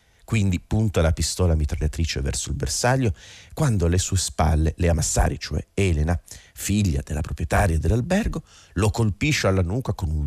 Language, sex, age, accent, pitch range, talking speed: Italian, male, 40-59, native, 80-100 Hz, 150 wpm